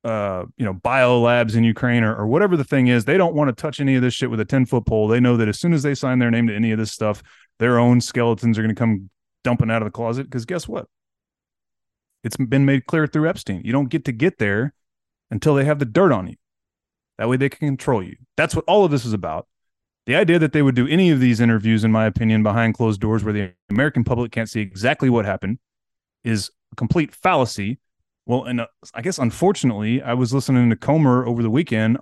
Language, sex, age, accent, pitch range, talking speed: English, male, 30-49, American, 110-140 Hz, 245 wpm